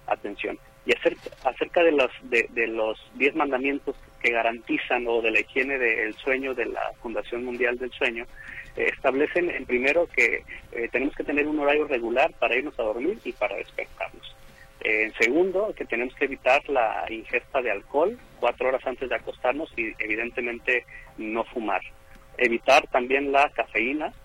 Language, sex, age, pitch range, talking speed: Spanish, male, 30-49, 115-150 Hz, 170 wpm